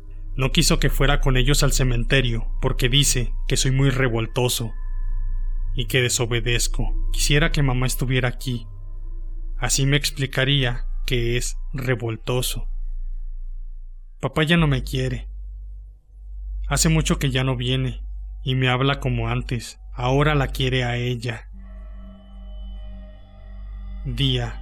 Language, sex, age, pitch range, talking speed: Spanish, male, 30-49, 100-140 Hz, 120 wpm